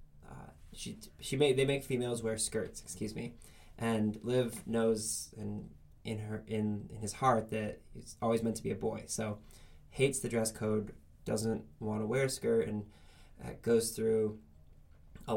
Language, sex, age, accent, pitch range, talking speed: English, male, 20-39, American, 95-115 Hz, 170 wpm